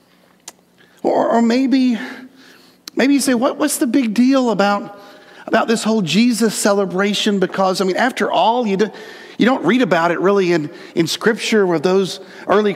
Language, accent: English, American